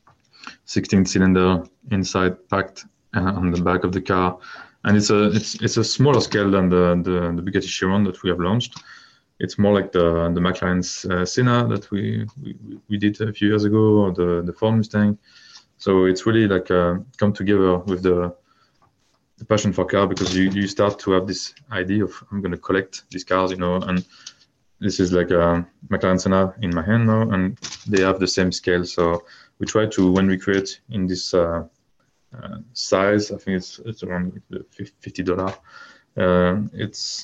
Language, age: English, 20-39